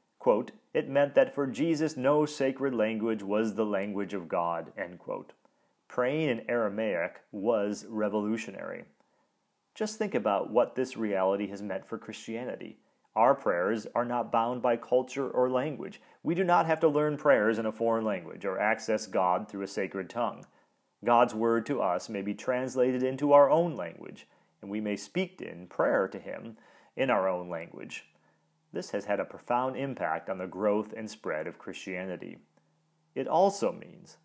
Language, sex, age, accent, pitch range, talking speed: English, male, 30-49, American, 105-150 Hz, 170 wpm